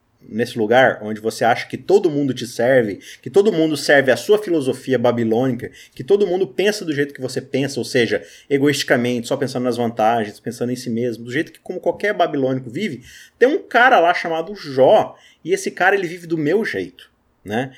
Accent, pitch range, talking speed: Brazilian, 110-155 Hz, 205 wpm